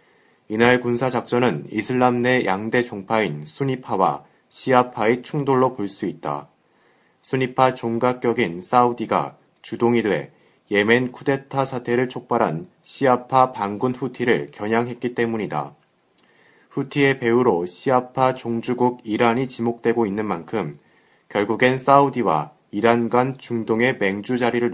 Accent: native